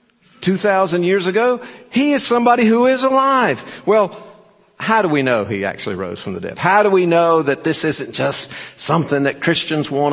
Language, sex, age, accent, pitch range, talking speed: English, male, 50-69, American, 125-170 Hz, 190 wpm